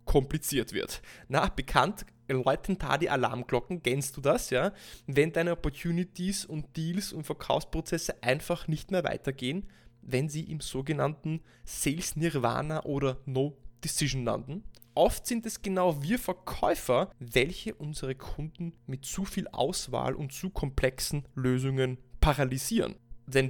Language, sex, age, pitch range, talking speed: German, male, 20-39, 130-170 Hz, 135 wpm